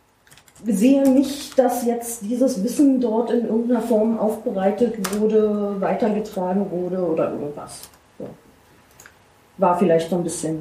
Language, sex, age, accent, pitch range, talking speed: German, female, 30-49, German, 195-245 Hz, 125 wpm